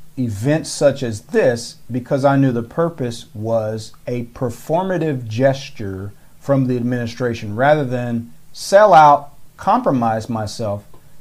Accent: American